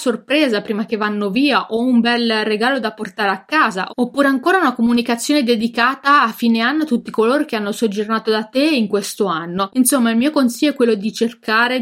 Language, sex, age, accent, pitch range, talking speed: Italian, female, 20-39, native, 215-255 Hz, 205 wpm